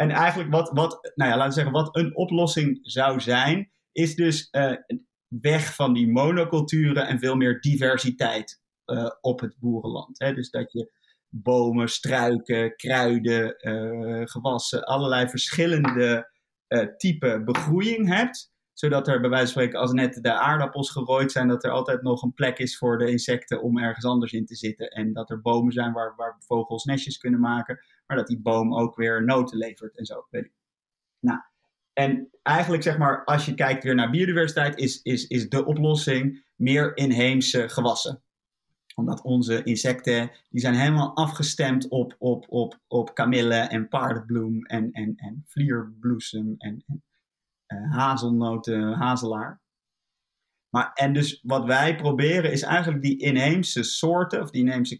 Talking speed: 165 wpm